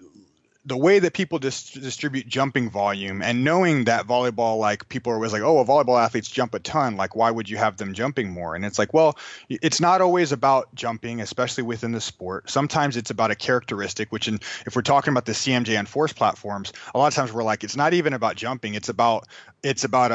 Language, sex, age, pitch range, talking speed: English, male, 30-49, 110-135 Hz, 215 wpm